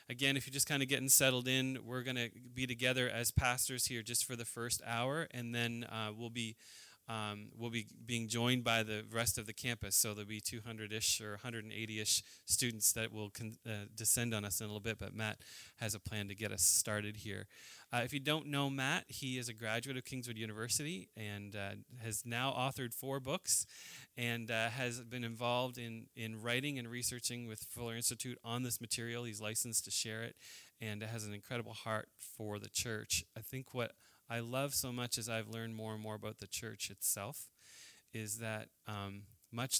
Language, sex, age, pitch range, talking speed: English, male, 20-39, 110-125 Hz, 205 wpm